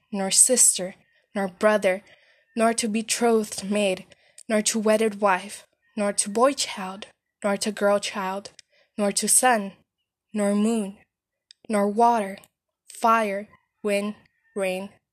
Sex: female